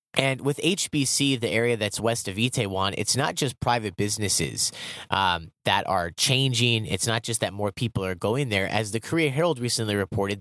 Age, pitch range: 30-49, 105-130 Hz